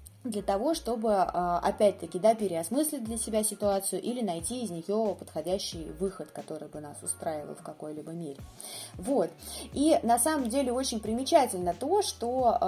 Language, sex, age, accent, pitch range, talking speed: Russian, female, 20-39, native, 180-235 Hz, 145 wpm